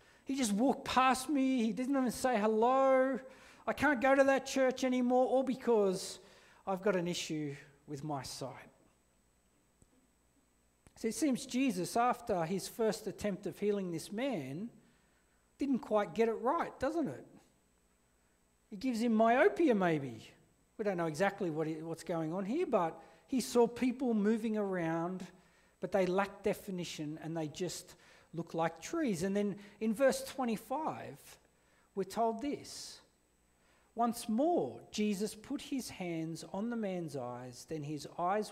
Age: 40-59